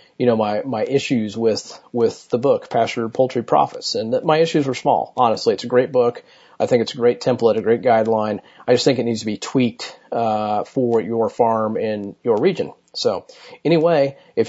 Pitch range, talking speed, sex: 120-150 Hz, 205 wpm, male